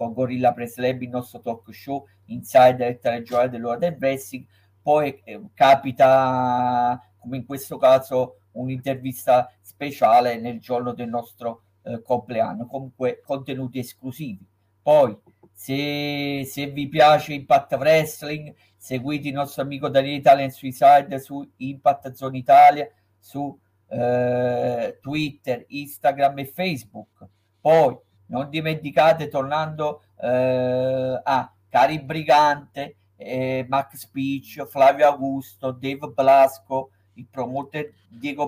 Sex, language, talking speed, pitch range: male, Italian, 120 wpm, 125-145 Hz